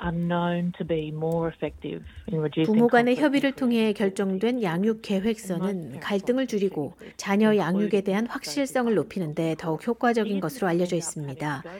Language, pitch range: Korean, 175-235 Hz